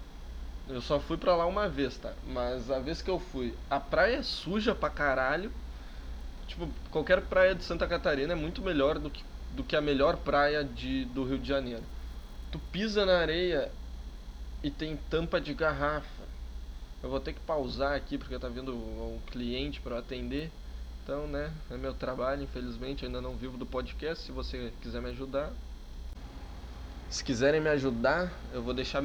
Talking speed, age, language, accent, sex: 180 wpm, 20-39, Portuguese, Brazilian, male